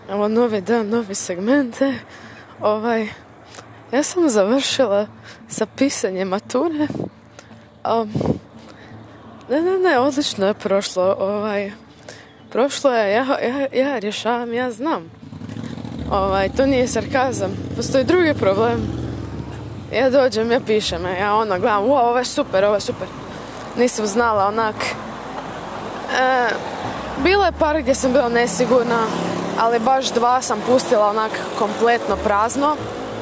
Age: 20-39